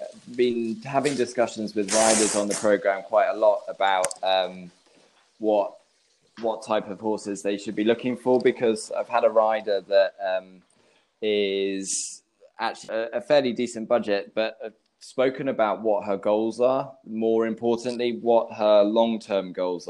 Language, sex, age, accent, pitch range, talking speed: English, male, 20-39, British, 95-110 Hz, 150 wpm